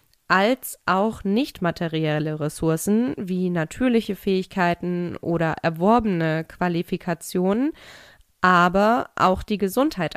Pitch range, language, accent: 165-205 Hz, German, German